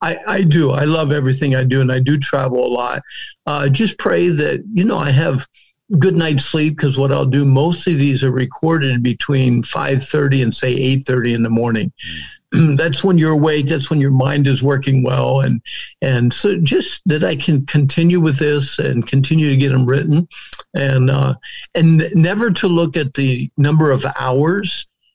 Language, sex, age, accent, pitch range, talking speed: English, male, 50-69, American, 130-160 Hz, 195 wpm